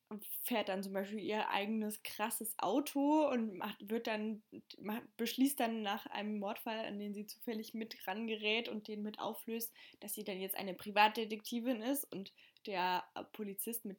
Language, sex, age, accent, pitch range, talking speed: German, female, 20-39, German, 190-230 Hz, 170 wpm